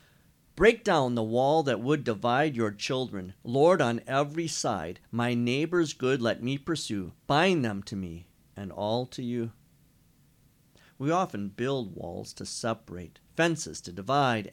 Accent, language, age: American, English, 50-69